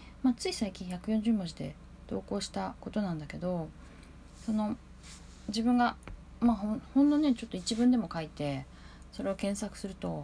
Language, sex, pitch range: Japanese, female, 145-225 Hz